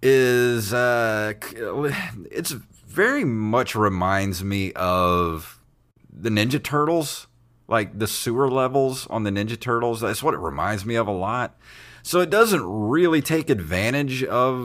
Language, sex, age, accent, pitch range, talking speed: English, male, 30-49, American, 95-125 Hz, 140 wpm